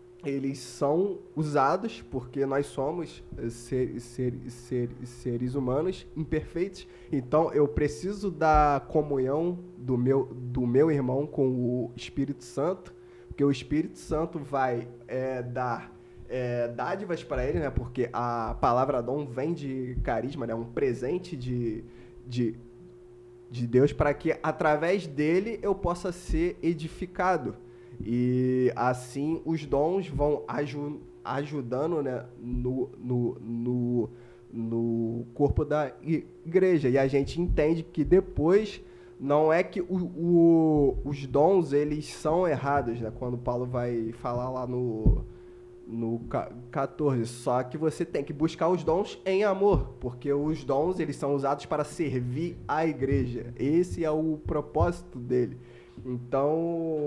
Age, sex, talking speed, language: 20-39, male, 125 wpm, Portuguese